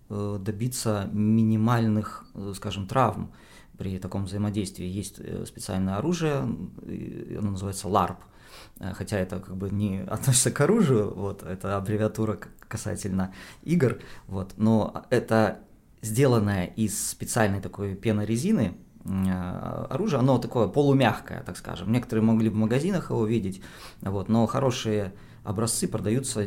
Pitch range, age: 100-120 Hz, 20-39